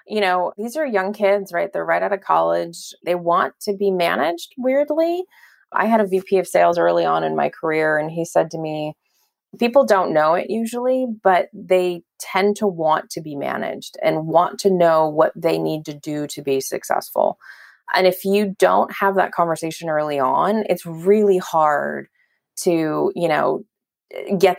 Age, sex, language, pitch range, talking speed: 20-39, female, English, 155-195 Hz, 185 wpm